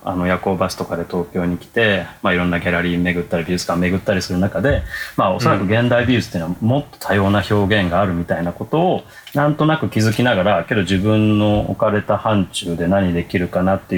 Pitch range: 95-120 Hz